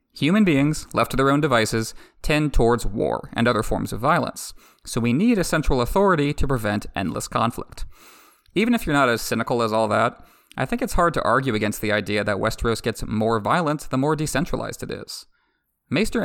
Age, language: 30-49, English